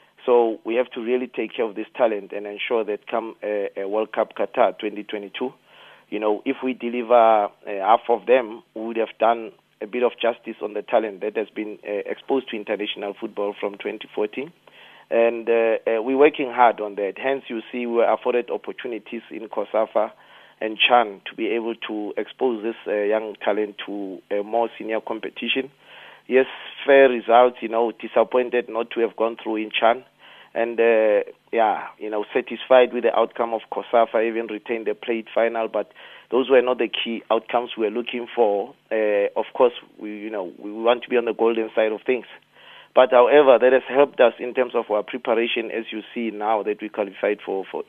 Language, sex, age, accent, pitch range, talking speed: English, male, 40-59, South African, 110-125 Hz, 200 wpm